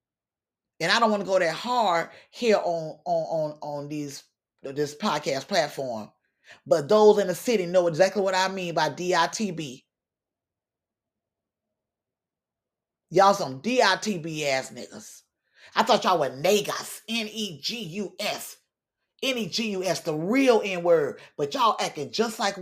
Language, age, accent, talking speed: English, 30-49, American, 130 wpm